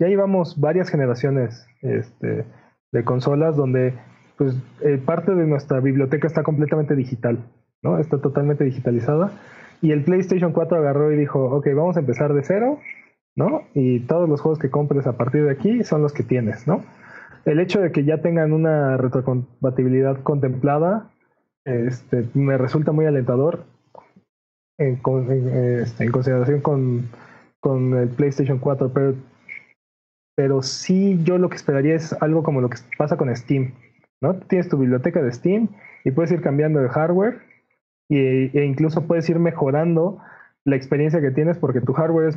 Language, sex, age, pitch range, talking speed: Spanish, male, 20-39, 130-160 Hz, 165 wpm